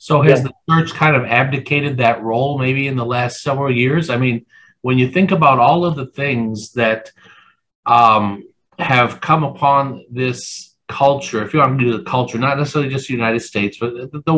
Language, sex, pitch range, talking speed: English, male, 120-145 Hz, 195 wpm